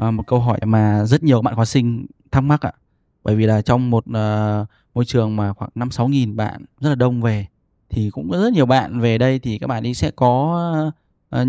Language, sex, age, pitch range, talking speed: Vietnamese, male, 10-29, 115-140 Hz, 245 wpm